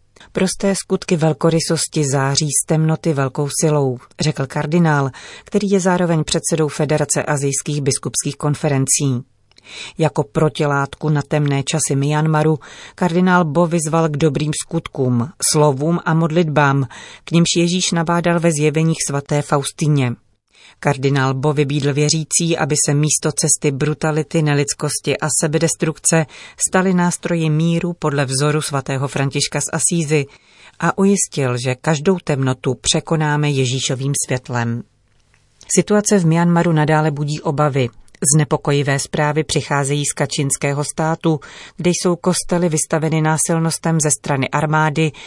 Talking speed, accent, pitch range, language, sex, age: 120 wpm, native, 140-165 Hz, Czech, female, 30-49